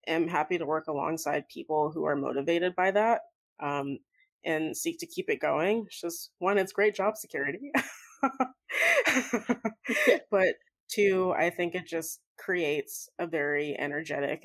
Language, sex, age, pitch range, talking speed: English, female, 20-39, 155-195 Hz, 145 wpm